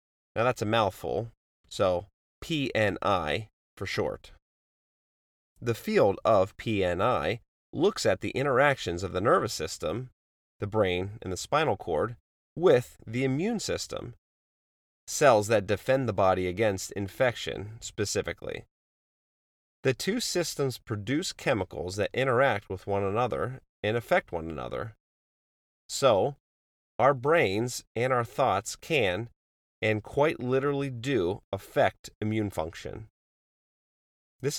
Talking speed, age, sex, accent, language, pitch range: 115 wpm, 30-49, male, American, English, 80-120 Hz